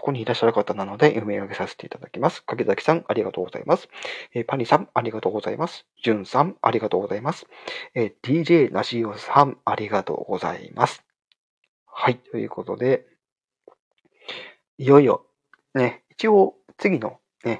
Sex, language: male, Japanese